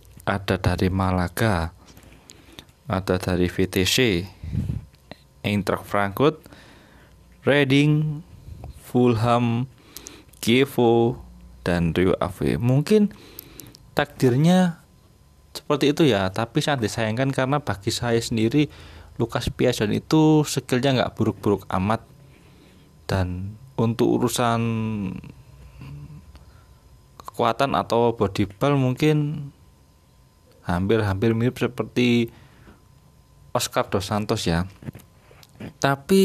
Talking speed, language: 80 wpm, Indonesian